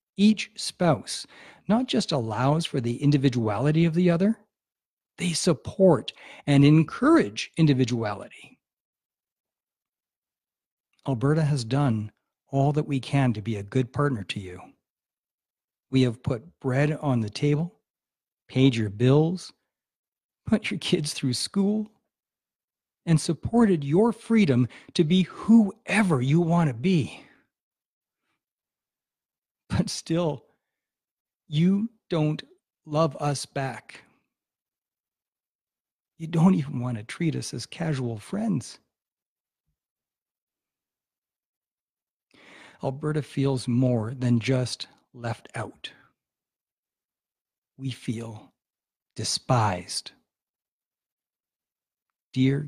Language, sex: English, male